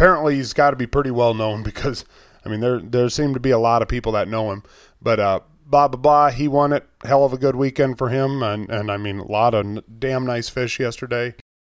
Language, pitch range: English, 120-145 Hz